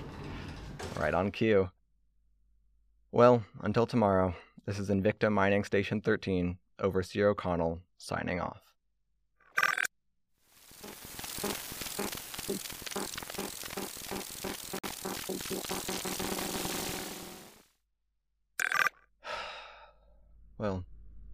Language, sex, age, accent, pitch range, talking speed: English, male, 30-49, American, 85-100 Hz, 50 wpm